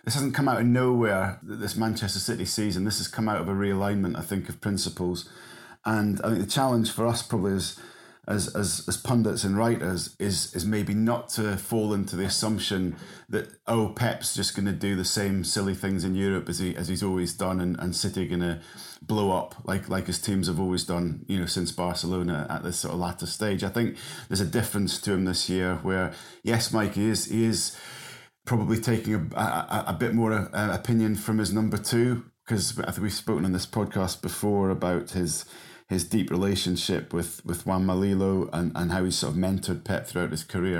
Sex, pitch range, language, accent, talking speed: male, 90-105 Hz, English, British, 215 wpm